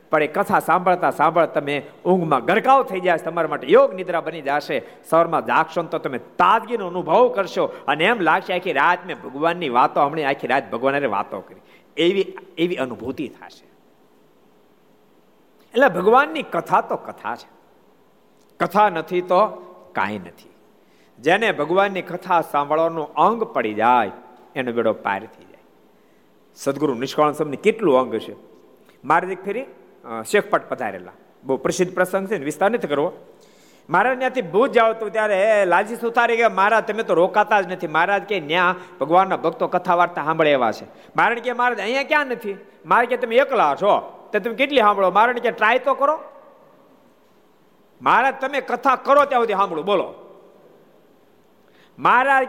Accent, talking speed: native, 120 wpm